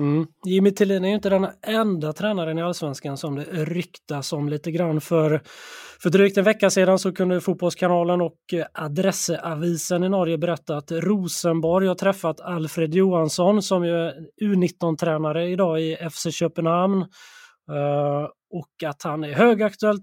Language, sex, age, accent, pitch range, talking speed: Swedish, male, 20-39, native, 160-185 Hz, 145 wpm